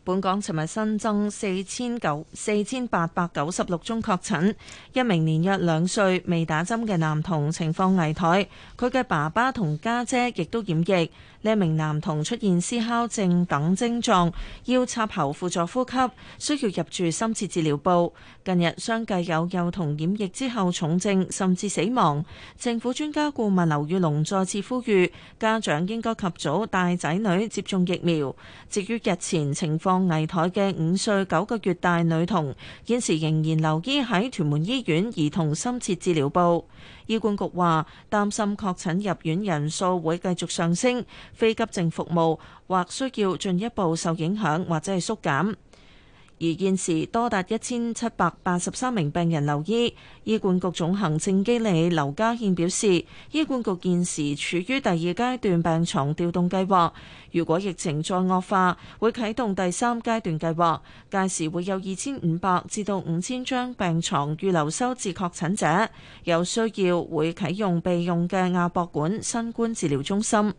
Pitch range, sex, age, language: 165-215 Hz, female, 30-49, Chinese